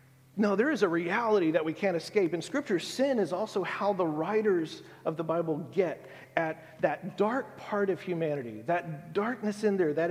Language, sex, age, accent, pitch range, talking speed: English, male, 40-59, American, 150-195 Hz, 190 wpm